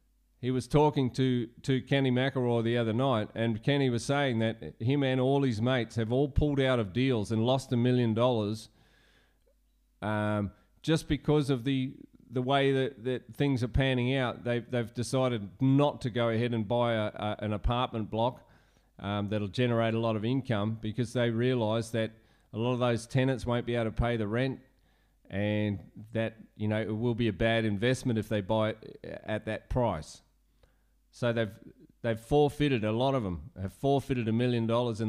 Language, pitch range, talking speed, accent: English, 110-130 Hz, 190 wpm, Australian